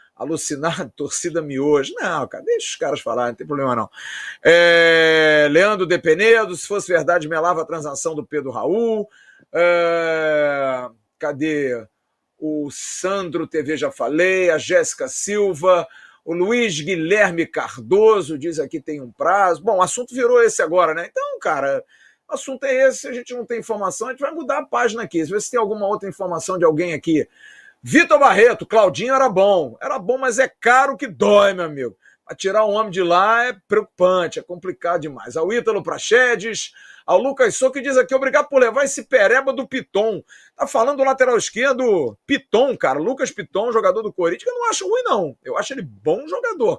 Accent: Brazilian